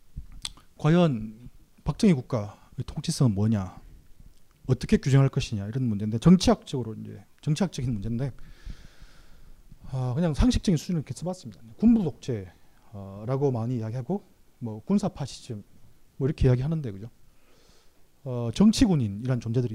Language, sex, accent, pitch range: Korean, male, native, 115-155 Hz